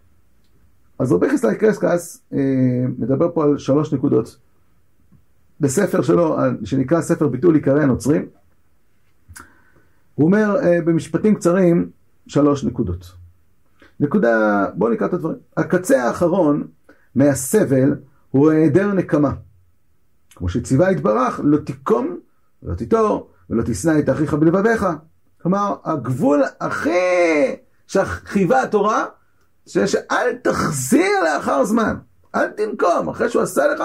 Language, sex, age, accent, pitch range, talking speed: Hebrew, male, 50-69, native, 135-185 Hz, 115 wpm